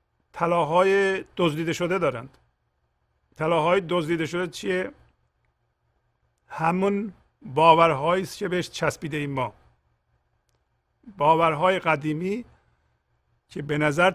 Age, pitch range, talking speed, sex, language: 50-69, 125-180 Hz, 80 wpm, male, Persian